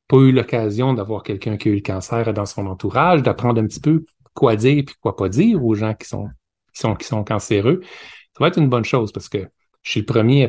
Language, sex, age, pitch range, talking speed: French, male, 30-49, 105-130 Hz, 240 wpm